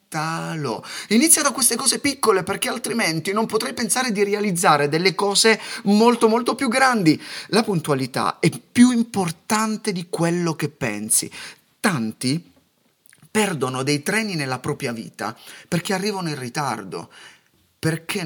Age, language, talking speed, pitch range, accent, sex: 30-49, Italian, 130 wpm, 125-190 Hz, native, male